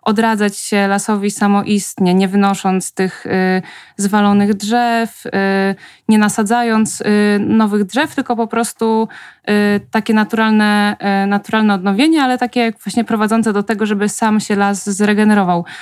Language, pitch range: Polish, 195-225 Hz